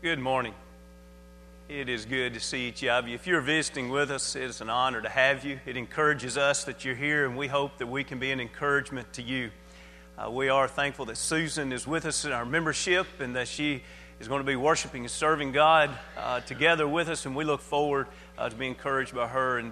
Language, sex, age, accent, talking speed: English, male, 40-59, American, 235 wpm